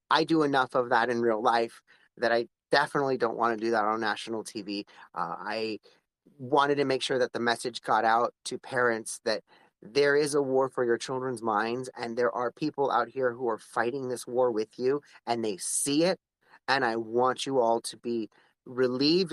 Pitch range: 120-165 Hz